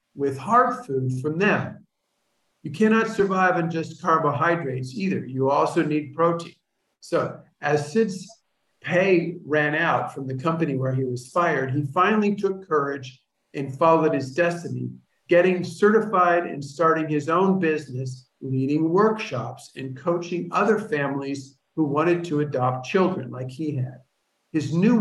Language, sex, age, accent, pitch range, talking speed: English, male, 50-69, American, 135-175 Hz, 145 wpm